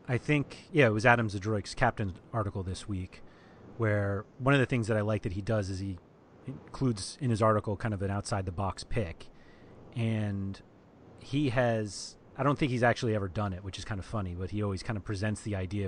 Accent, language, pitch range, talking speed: American, English, 95-115 Hz, 215 wpm